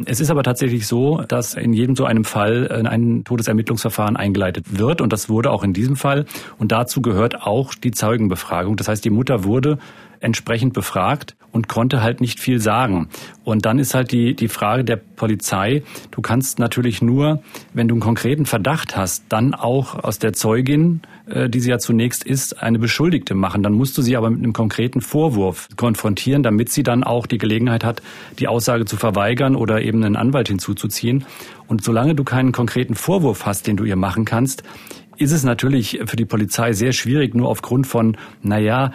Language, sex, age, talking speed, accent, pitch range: German, male, 40-59, 190 wpm, German, 110-130 Hz